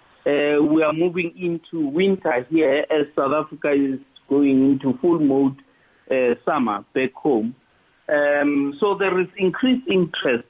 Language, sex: English, male